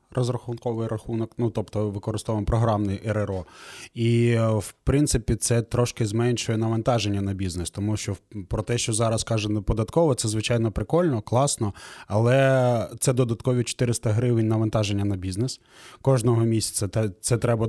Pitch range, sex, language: 110-125 Hz, male, Ukrainian